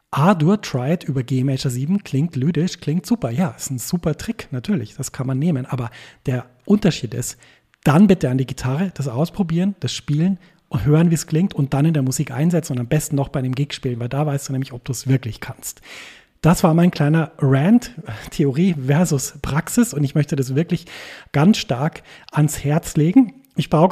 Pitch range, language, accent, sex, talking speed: 135-170 Hz, German, German, male, 205 wpm